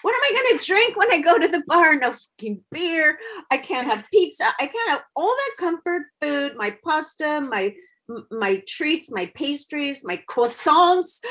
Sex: female